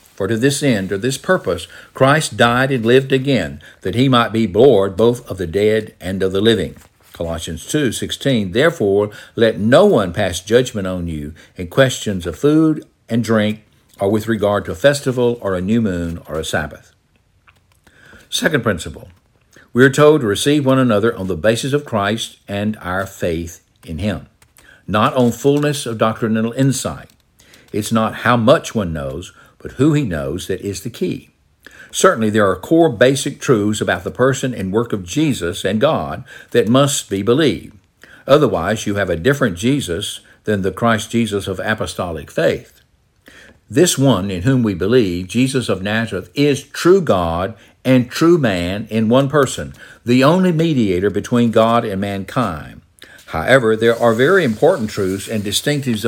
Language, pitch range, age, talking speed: English, 95-130 Hz, 60-79, 170 wpm